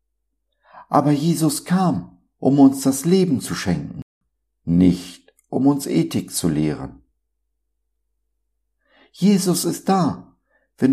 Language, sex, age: German, male, 60-79